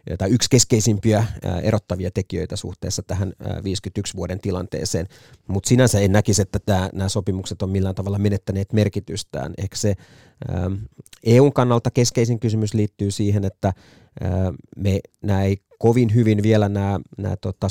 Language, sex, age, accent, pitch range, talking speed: Finnish, male, 30-49, native, 95-105 Hz, 130 wpm